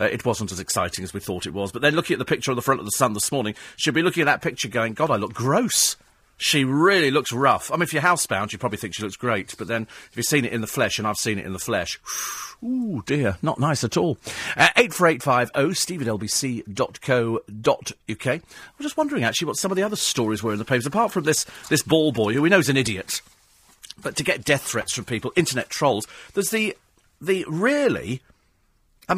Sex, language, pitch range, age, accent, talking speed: male, English, 110-175 Hz, 40-59, British, 245 wpm